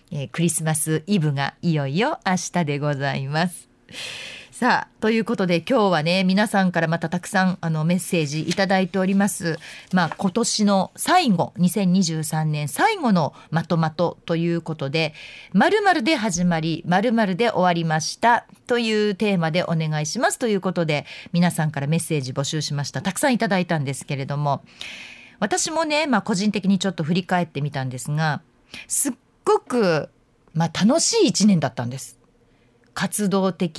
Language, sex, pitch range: Japanese, female, 150-210 Hz